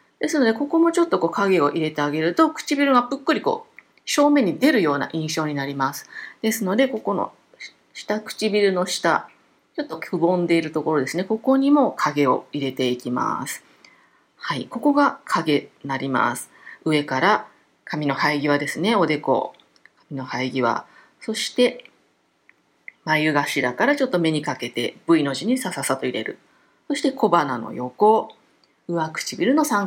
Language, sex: Japanese, female